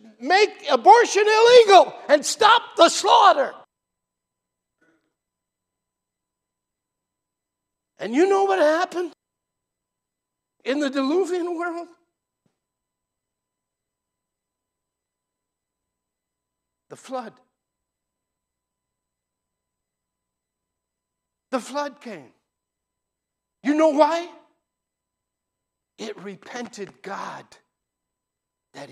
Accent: American